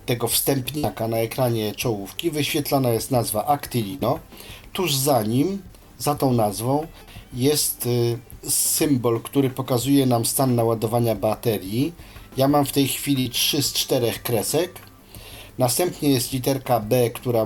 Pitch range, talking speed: 105-130 Hz, 130 wpm